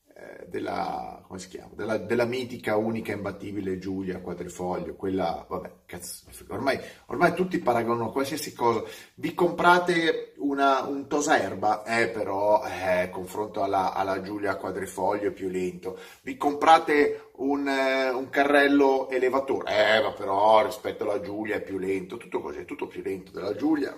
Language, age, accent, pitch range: Italian, 30-49, native, 105-145 Hz